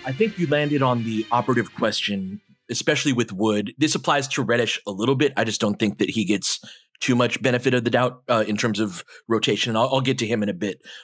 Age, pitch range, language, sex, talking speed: 30-49, 110-150 Hz, English, male, 240 wpm